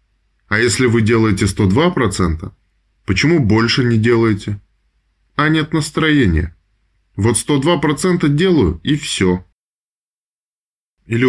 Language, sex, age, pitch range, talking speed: Russian, male, 20-39, 95-130 Hz, 95 wpm